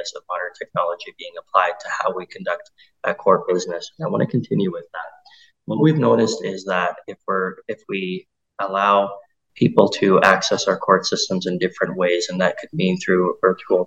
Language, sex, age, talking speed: English, male, 20-39, 185 wpm